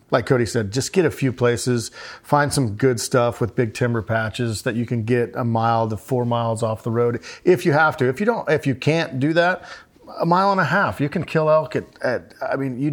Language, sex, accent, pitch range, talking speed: English, male, American, 115-135 Hz, 250 wpm